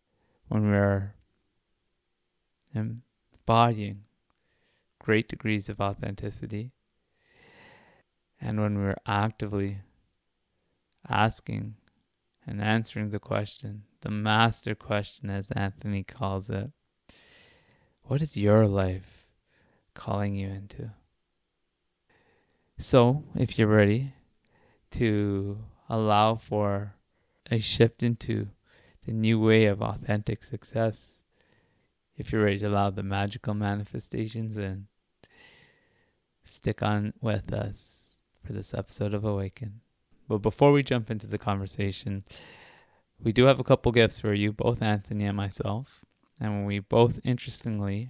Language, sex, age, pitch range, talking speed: English, male, 20-39, 100-115 Hz, 110 wpm